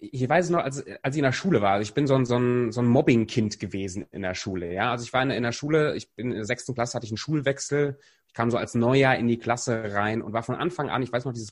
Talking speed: 315 wpm